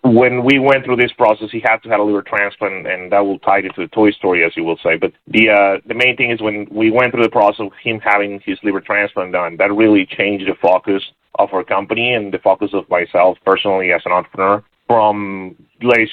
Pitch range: 95-115 Hz